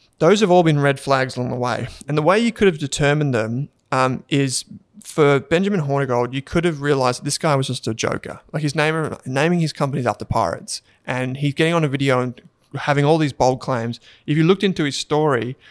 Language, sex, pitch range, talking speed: English, male, 125-150 Hz, 225 wpm